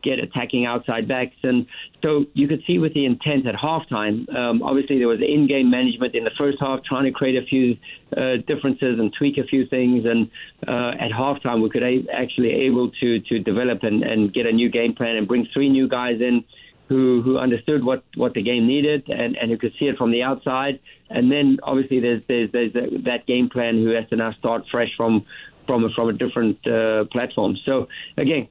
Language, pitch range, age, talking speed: English, 120-140 Hz, 50-69, 220 wpm